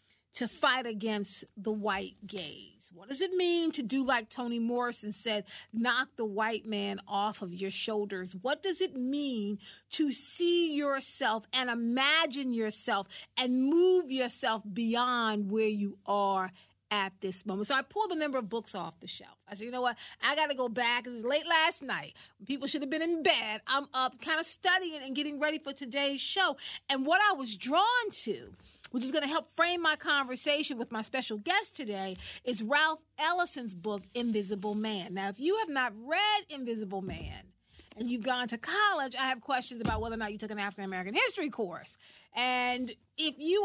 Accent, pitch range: American, 215-300 Hz